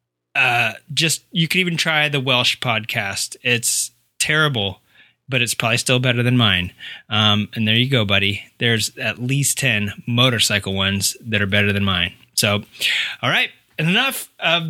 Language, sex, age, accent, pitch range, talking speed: English, male, 20-39, American, 120-165 Hz, 165 wpm